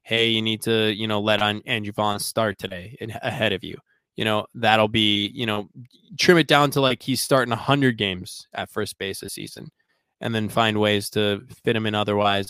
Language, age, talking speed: English, 20-39, 215 wpm